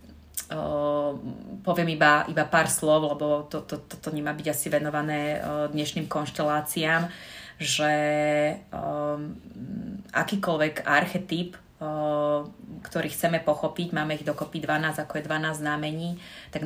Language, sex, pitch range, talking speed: Slovak, female, 150-160 Hz, 125 wpm